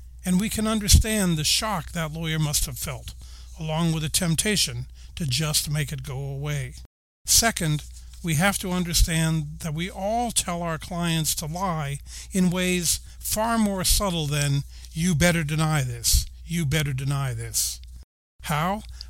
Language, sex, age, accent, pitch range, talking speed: English, male, 50-69, American, 130-180 Hz, 155 wpm